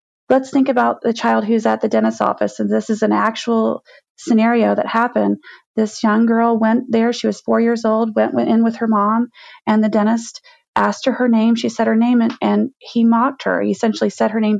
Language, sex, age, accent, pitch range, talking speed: English, female, 30-49, American, 215-260 Hz, 220 wpm